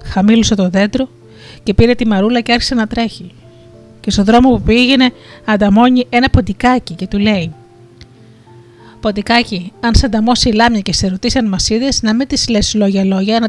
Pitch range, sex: 165-235 Hz, female